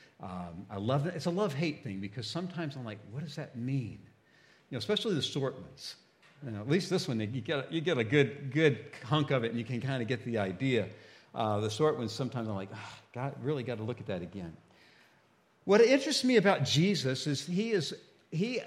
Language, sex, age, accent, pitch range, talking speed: English, male, 50-69, American, 140-220 Hz, 230 wpm